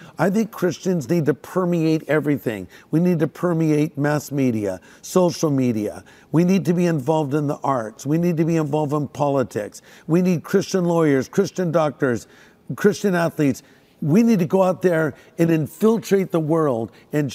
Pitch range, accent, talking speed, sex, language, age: 140-175 Hz, American, 170 wpm, male, English, 50-69